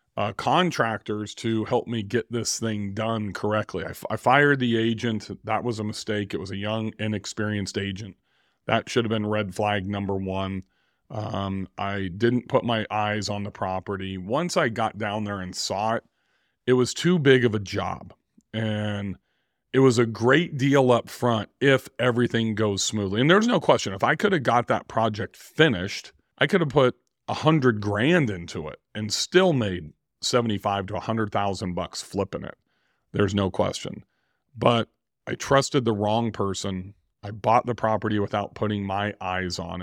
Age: 40-59